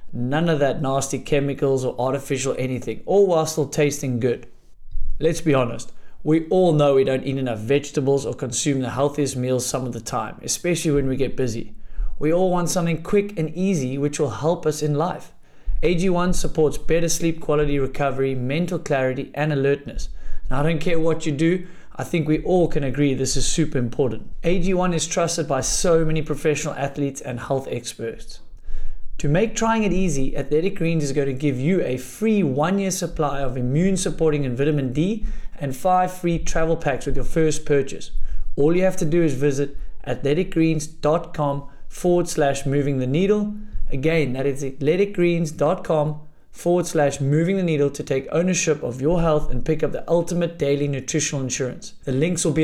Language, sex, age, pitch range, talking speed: English, male, 30-49, 135-165 Hz, 180 wpm